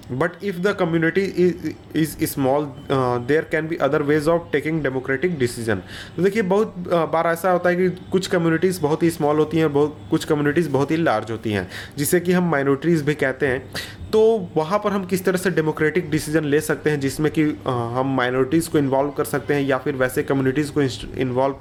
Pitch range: 125-165 Hz